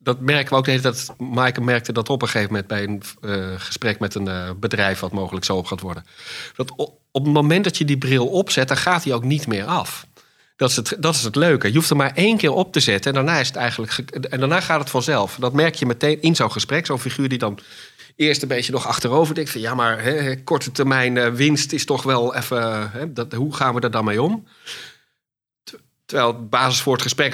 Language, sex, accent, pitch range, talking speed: Dutch, male, Dutch, 115-145 Hz, 245 wpm